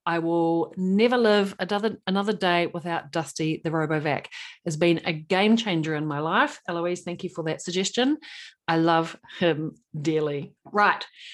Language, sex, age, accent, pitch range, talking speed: English, female, 40-59, Australian, 165-205 Hz, 155 wpm